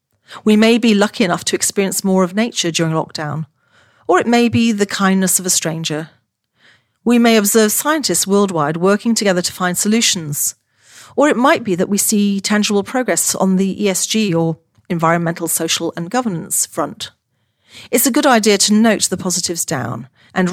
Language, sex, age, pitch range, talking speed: English, female, 40-59, 165-210 Hz, 170 wpm